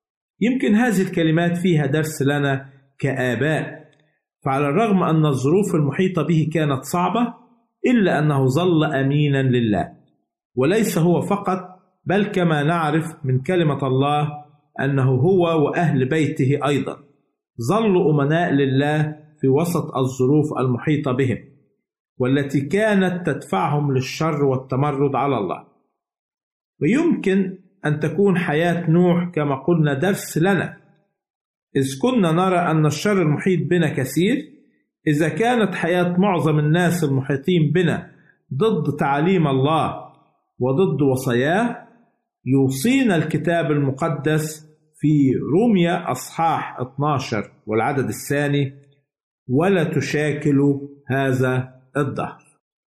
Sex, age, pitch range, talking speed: male, 50-69, 140-180 Hz, 105 wpm